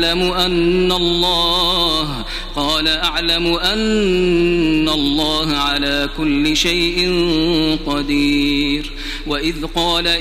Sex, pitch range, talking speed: male, 155-180 Hz, 75 wpm